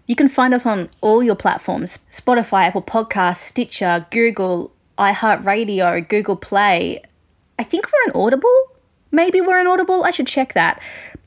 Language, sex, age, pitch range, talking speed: English, female, 20-39, 195-265 Hz, 155 wpm